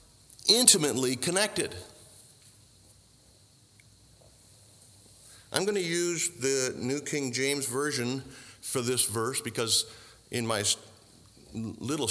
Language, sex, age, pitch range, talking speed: English, male, 50-69, 100-125 Hz, 90 wpm